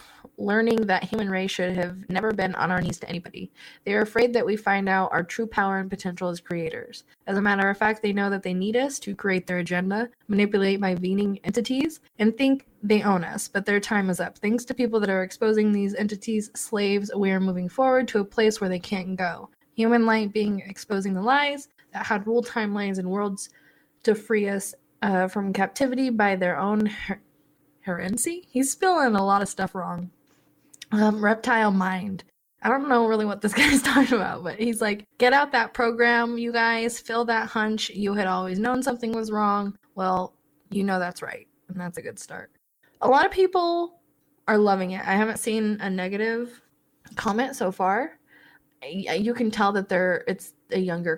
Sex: female